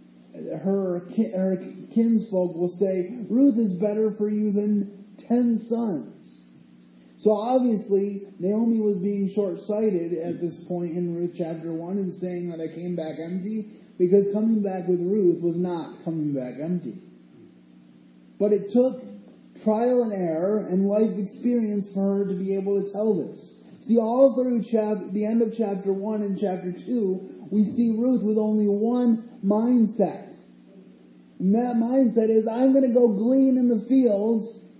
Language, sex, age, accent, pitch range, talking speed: English, male, 30-49, American, 170-220 Hz, 155 wpm